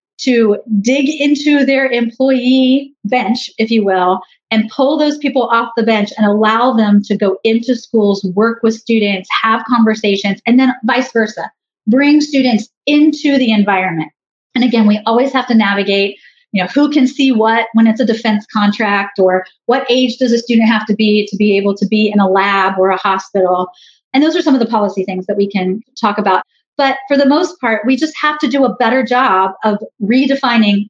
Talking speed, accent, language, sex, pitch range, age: 200 wpm, American, English, female, 205-260 Hz, 30-49